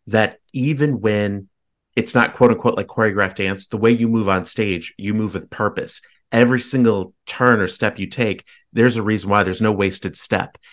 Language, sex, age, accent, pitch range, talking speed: English, male, 30-49, American, 100-120 Hz, 190 wpm